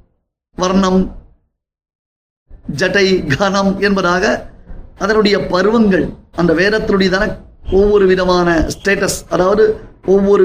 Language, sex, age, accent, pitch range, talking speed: Tamil, male, 30-49, native, 160-205 Hz, 70 wpm